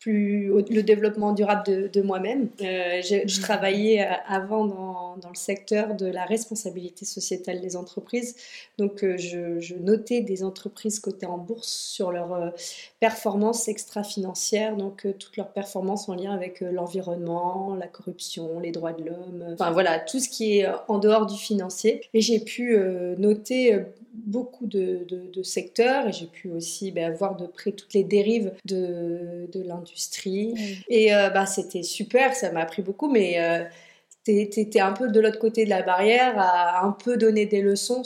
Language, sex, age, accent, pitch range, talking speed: French, female, 30-49, French, 185-220 Hz, 185 wpm